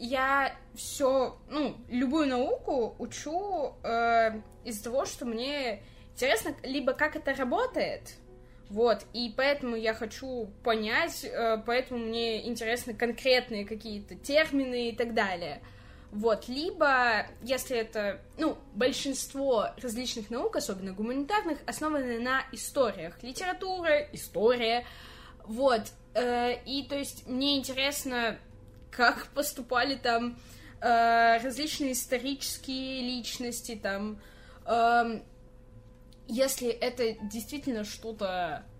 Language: Russian